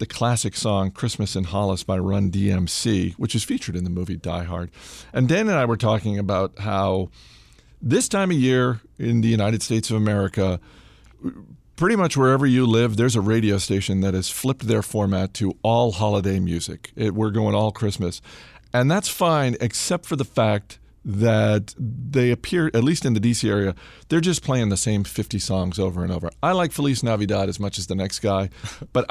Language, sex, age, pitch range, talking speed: English, male, 50-69, 95-130 Hz, 195 wpm